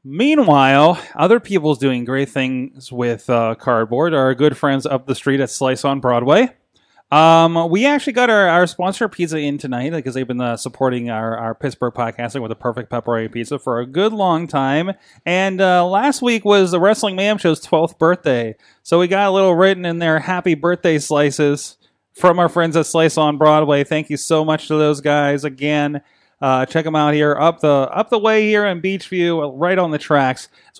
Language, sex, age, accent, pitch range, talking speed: English, male, 20-39, American, 130-180 Hz, 200 wpm